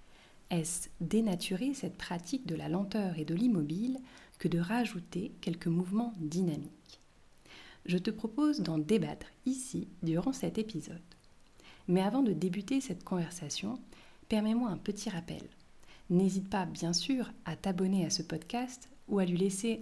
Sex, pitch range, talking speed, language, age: female, 170-225 Hz, 145 wpm, French, 30-49